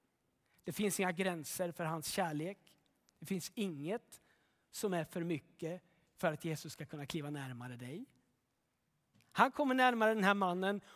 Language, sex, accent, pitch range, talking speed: Swedish, male, native, 190-300 Hz, 155 wpm